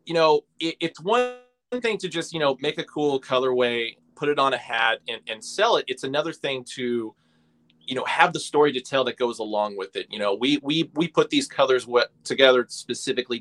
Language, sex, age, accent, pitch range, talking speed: English, male, 30-49, American, 115-150 Hz, 220 wpm